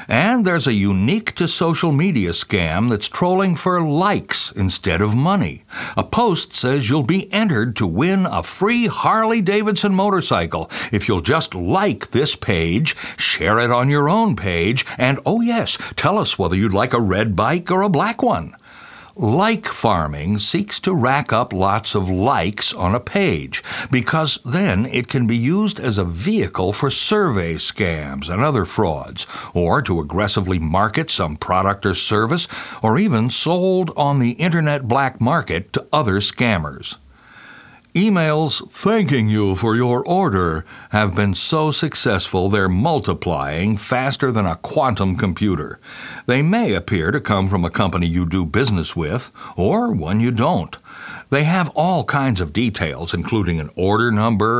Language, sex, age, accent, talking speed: English, male, 60-79, American, 160 wpm